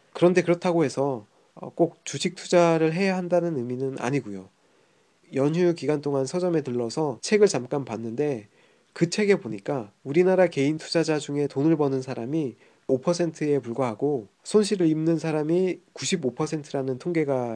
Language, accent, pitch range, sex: Korean, native, 130-175 Hz, male